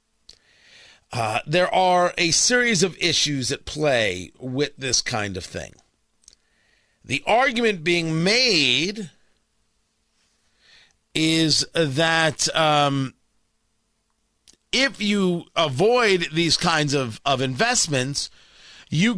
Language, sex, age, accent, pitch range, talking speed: English, male, 40-59, American, 130-180 Hz, 95 wpm